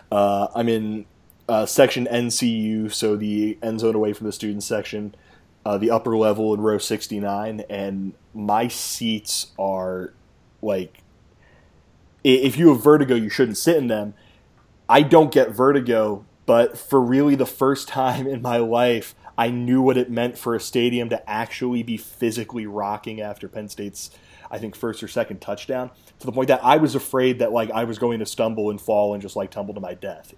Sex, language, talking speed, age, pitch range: male, English, 185 wpm, 20-39, 105-140 Hz